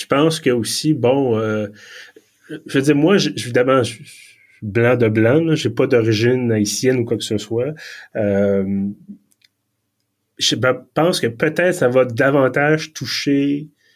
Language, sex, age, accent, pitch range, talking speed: French, male, 30-49, Canadian, 110-140 Hz, 170 wpm